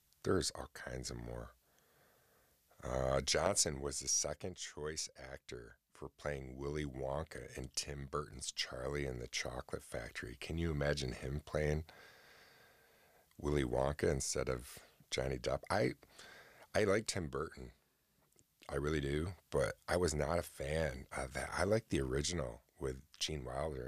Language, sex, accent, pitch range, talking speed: English, male, American, 65-75 Hz, 145 wpm